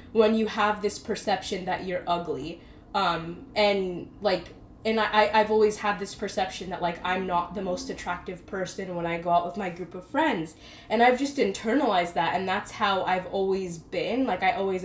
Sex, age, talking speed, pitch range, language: female, 20-39, 200 wpm, 180-225 Hz, English